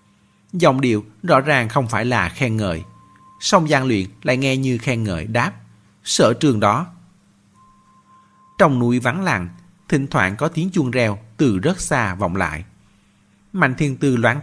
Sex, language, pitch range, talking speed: male, Vietnamese, 105-150 Hz, 165 wpm